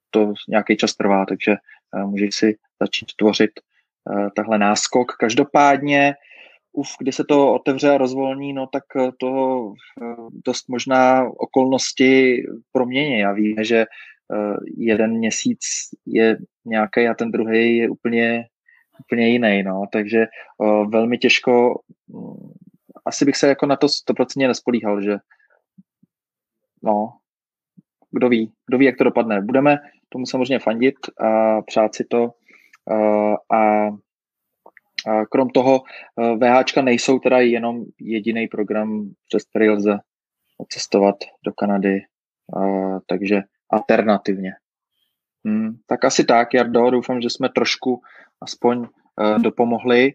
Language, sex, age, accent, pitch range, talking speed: Czech, male, 20-39, native, 110-135 Hz, 125 wpm